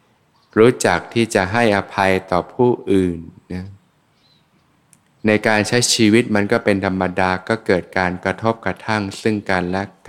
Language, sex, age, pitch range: Thai, male, 20-39, 95-115 Hz